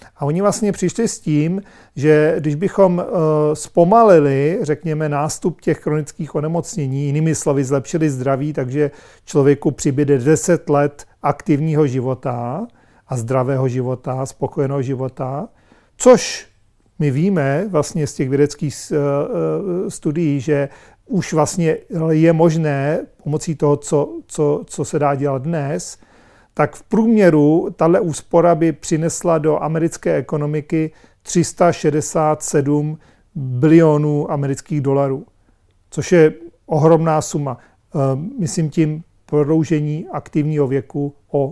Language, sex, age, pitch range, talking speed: Czech, male, 40-59, 140-165 Hz, 110 wpm